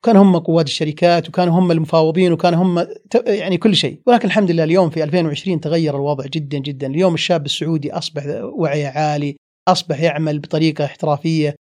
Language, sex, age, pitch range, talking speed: Arabic, male, 30-49, 155-190 Hz, 165 wpm